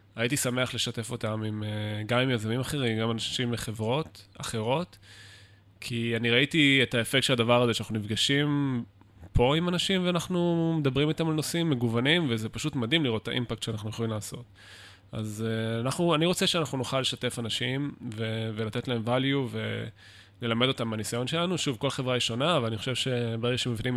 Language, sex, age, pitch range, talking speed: Hebrew, male, 20-39, 110-135 Hz, 165 wpm